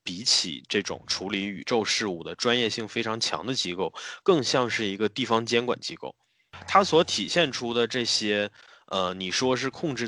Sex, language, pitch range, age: male, Chinese, 100-135 Hz, 20-39